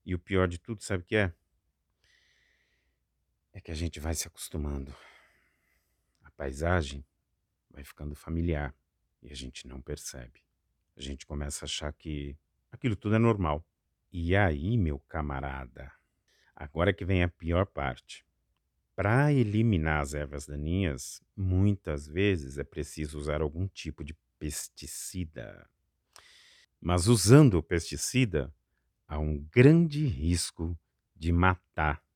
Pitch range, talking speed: 75-105 Hz, 130 wpm